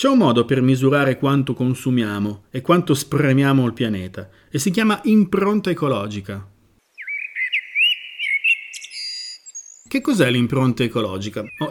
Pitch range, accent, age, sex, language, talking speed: 120-170 Hz, native, 40-59, male, Italian, 110 wpm